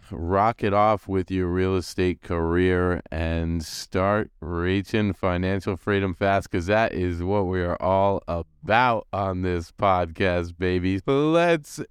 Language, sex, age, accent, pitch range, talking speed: English, male, 30-49, American, 95-125 Hz, 135 wpm